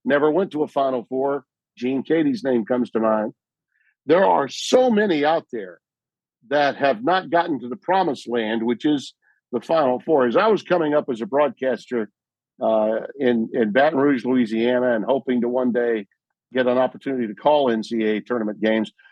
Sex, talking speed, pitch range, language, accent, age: male, 180 wpm, 125-175 Hz, English, American, 50-69